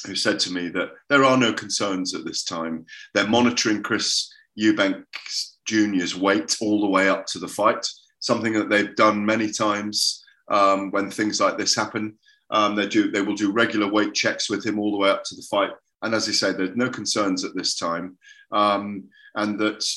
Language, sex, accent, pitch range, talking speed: English, male, British, 100-125 Hz, 200 wpm